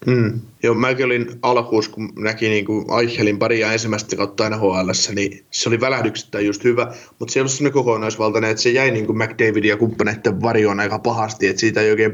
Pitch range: 105-115 Hz